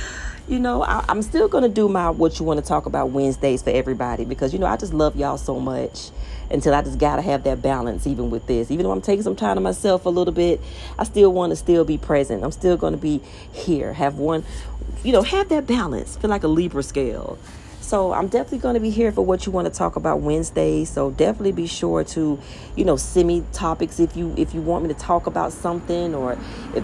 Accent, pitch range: American, 135-180 Hz